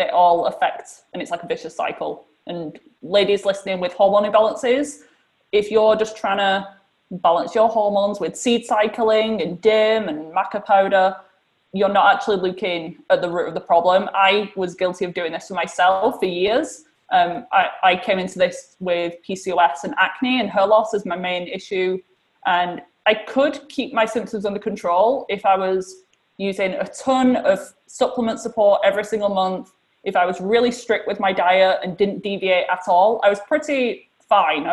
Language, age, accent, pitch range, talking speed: English, 20-39, British, 180-215 Hz, 185 wpm